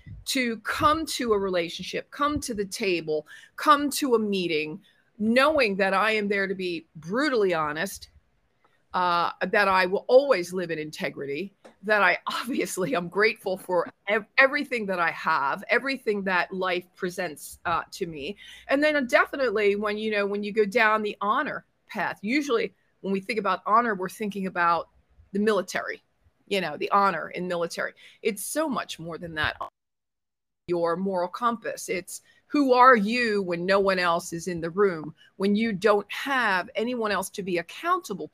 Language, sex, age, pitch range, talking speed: English, female, 40-59, 180-230 Hz, 170 wpm